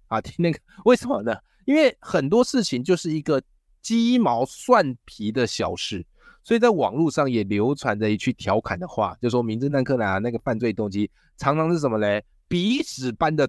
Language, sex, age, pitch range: Chinese, male, 20-39, 110-175 Hz